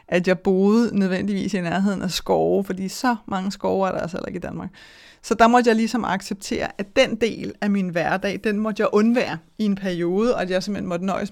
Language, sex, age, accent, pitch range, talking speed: Danish, female, 30-49, native, 190-235 Hz, 230 wpm